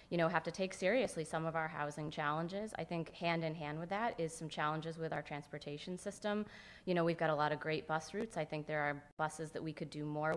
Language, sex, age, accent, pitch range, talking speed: English, female, 30-49, American, 155-175 Hz, 260 wpm